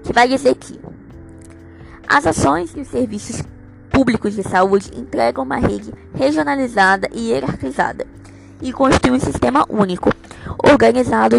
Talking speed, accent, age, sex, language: 125 wpm, Brazilian, 10-29, female, Portuguese